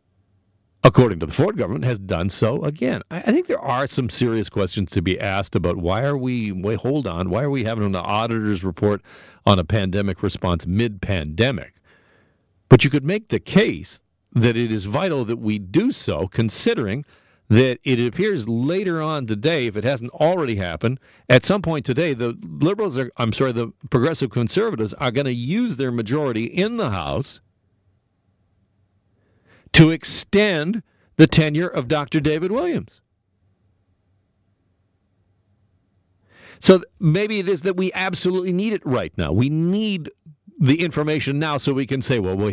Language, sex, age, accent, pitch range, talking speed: English, male, 50-69, American, 95-140 Hz, 160 wpm